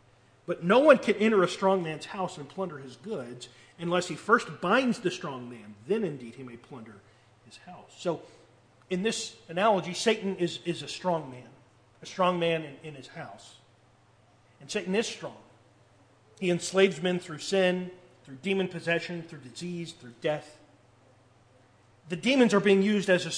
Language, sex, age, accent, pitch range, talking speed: English, male, 40-59, American, 125-195 Hz, 170 wpm